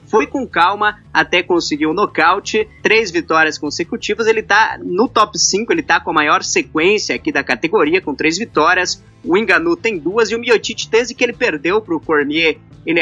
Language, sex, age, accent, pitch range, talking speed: Portuguese, male, 20-39, Brazilian, 160-265 Hz, 195 wpm